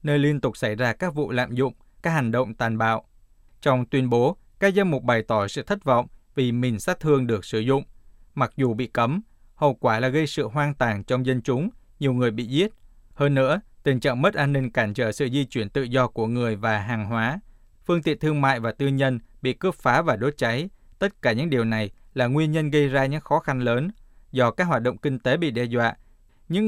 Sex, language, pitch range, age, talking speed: male, Vietnamese, 115-145 Hz, 20-39, 240 wpm